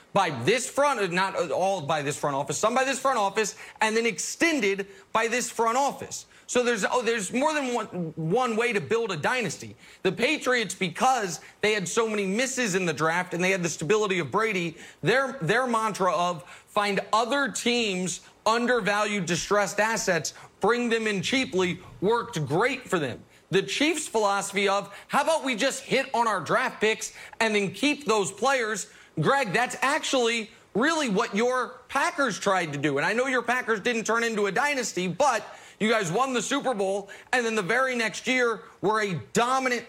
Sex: male